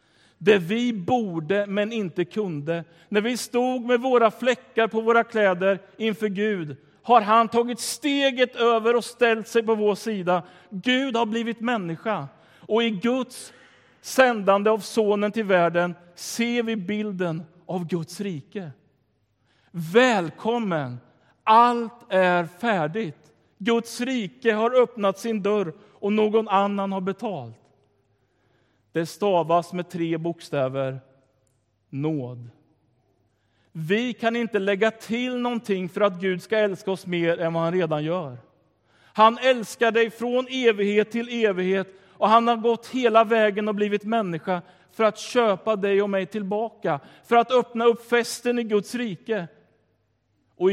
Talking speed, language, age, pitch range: 140 wpm, Swedish, 50-69, 165-230 Hz